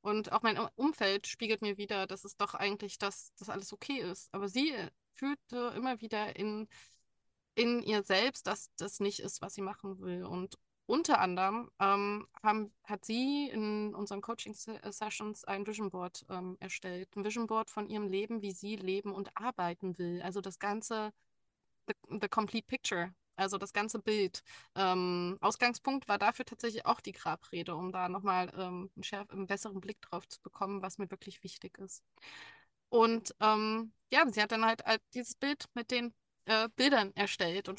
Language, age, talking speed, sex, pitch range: German, 20-39, 175 wpm, female, 195-225 Hz